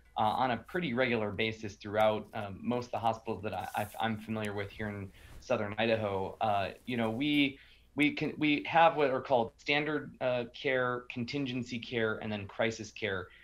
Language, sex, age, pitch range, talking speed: English, male, 20-39, 110-130 Hz, 170 wpm